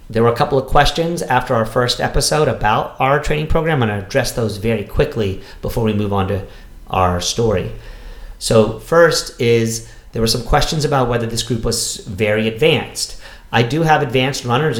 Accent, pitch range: American, 110-135 Hz